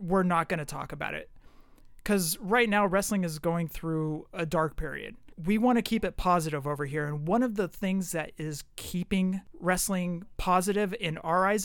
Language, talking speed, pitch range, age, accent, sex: English, 195 wpm, 155-195 Hz, 30-49, American, male